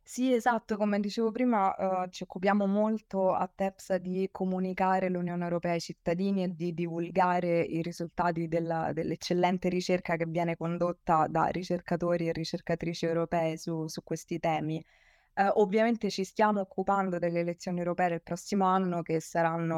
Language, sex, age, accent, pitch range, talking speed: Italian, female, 20-39, native, 170-190 Hz, 150 wpm